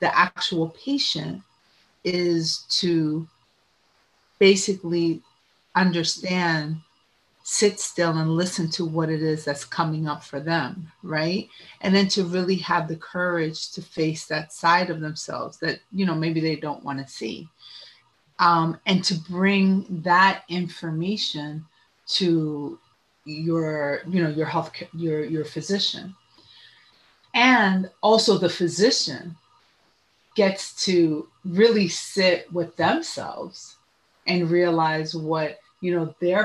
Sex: female